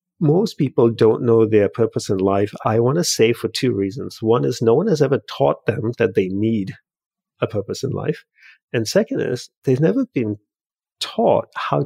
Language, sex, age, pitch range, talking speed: English, male, 50-69, 110-155 Hz, 190 wpm